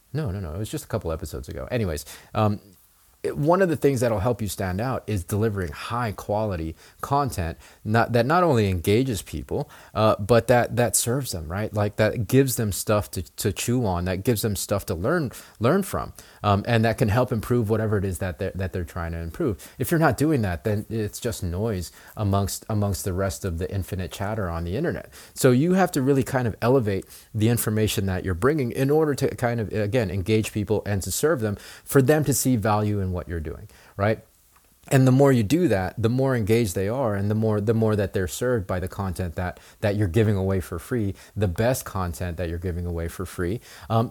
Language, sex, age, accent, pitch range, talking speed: English, male, 30-49, American, 95-125 Hz, 225 wpm